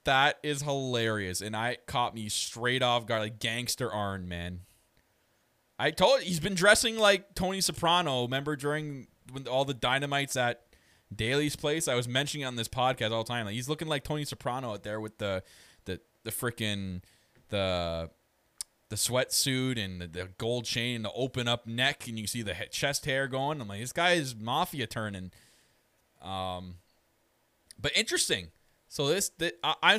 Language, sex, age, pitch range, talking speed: English, male, 20-39, 105-145 Hz, 180 wpm